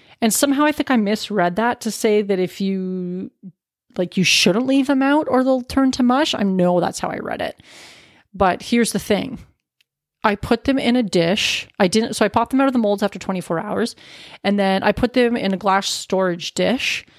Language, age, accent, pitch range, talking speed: English, 30-49, American, 180-230 Hz, 220 wpm